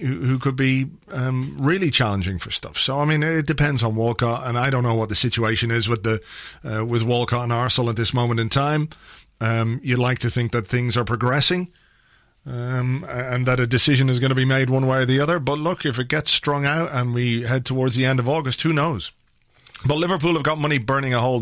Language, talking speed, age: English, 235 wpm, 40-59